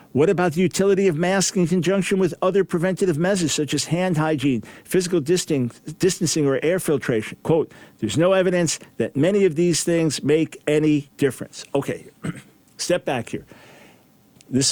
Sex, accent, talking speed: male, American, 155 wpm